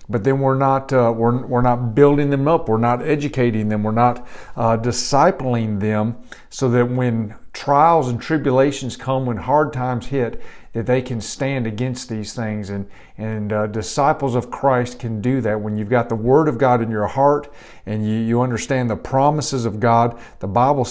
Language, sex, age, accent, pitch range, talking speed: English, male, 50-69, American, 115-145 Hz, 190 wpm